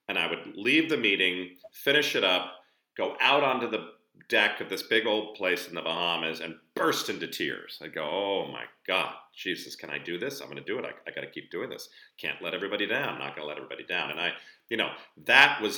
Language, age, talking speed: English, 40-59, 250 wpm